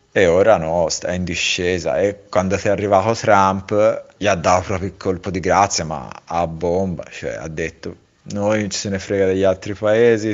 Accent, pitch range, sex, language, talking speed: native, 95-105 Hz, male, Italian, 190 wpm